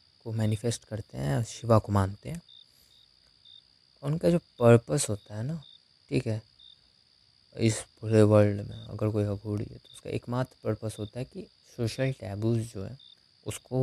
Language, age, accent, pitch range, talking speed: Hindi, 20-39, native, 105-130 Hz, 155 wpm